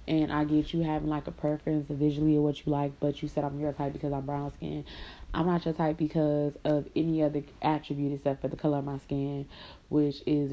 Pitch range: 145-155 Hz